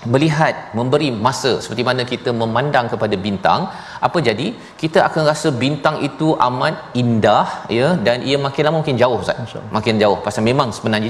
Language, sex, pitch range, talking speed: Malayalam, male, 115-140 Hz, 170 wpm